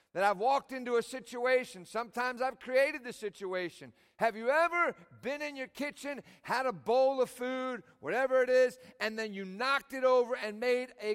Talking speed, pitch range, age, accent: 190 wpm, 235-295 Hz, 50-69, American